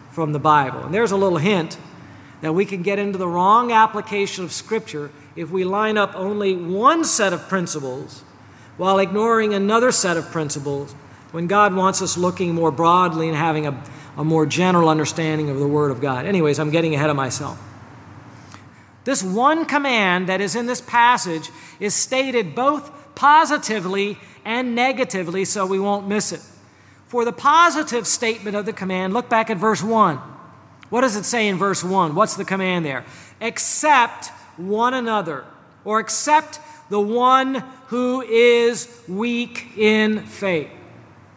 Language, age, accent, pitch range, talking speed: English, 40-59, American, 160-230 Hz, 160 wpm